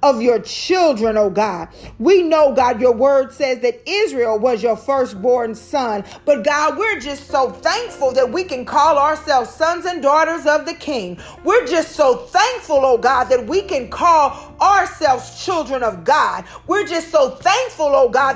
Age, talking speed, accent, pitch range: 40-59, 175 wpm, American, 255-360 Hz